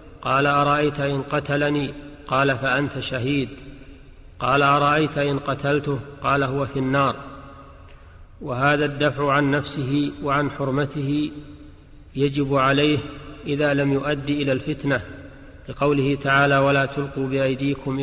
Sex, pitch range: male, 135-145 Hz